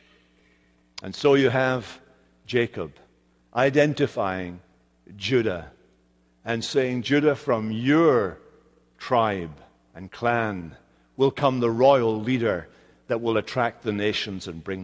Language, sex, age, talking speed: English, male, 60-79, 110 wpm